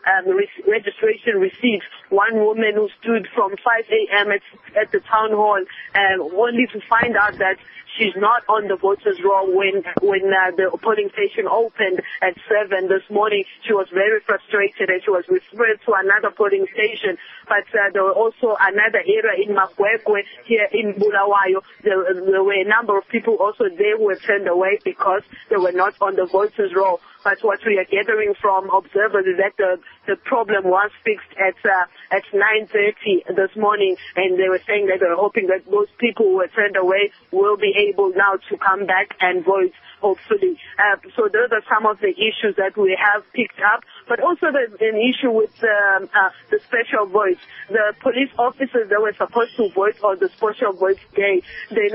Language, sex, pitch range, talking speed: English, female, 195-235 Hz, 195 wpm